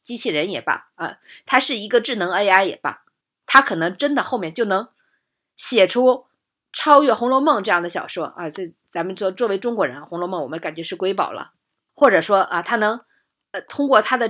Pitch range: 190-290 Hz